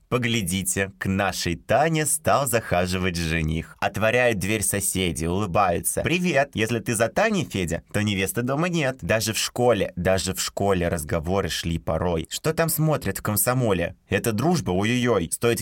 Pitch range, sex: 90-120 Hz, male